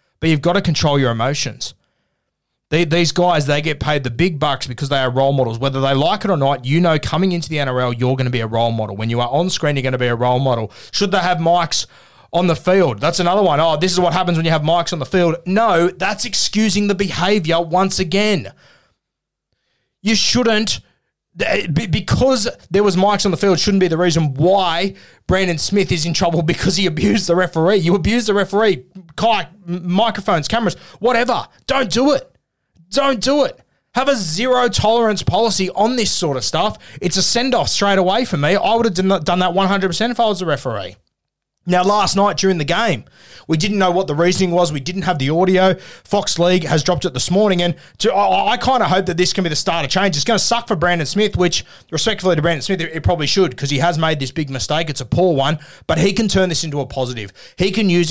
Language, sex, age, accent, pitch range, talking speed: English, male, 20-39, Australian, 145-195 Hz, 230 wpm